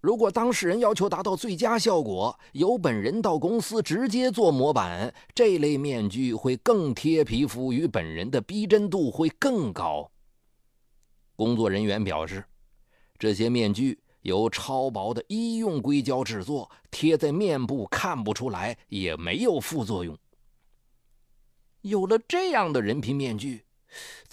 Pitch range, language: 105-160 Hz, Chinese